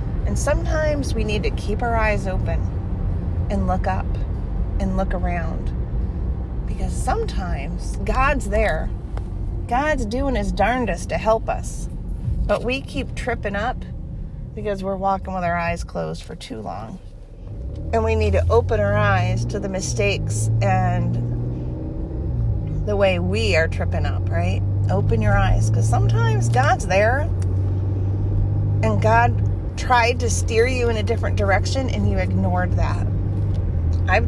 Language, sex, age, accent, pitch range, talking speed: English, female, 40-59, American, 80-100 Hz, 140 wpm